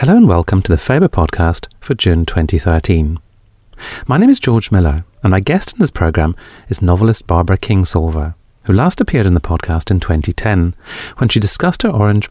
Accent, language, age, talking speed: British, English, 40-59, 185 wpm